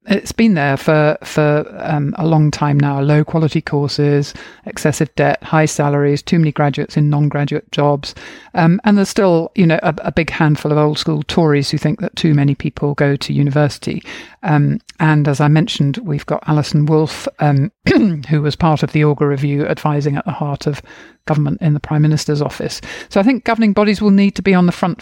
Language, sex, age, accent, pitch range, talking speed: English, male, 50-69, British, 150-175 Hz, 205 wpm